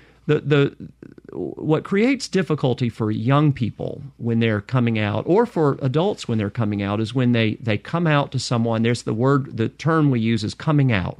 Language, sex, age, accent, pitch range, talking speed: English, male, 40-59, American, 110-140 Hz, 200 wpm